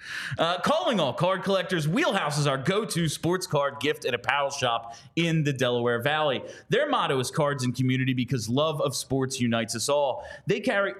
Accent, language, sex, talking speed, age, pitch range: American, English, male, 185 wpm, 30-49, 130-185 Hz